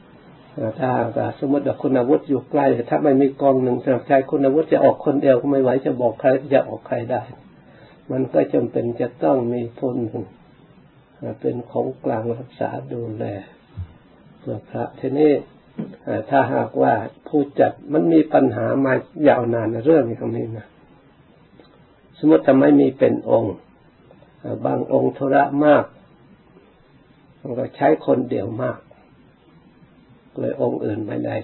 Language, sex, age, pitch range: Thai, male, 60-79, 120-145 Hz